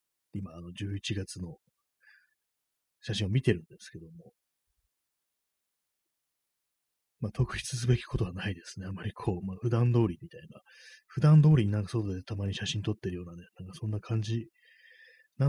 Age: 30-49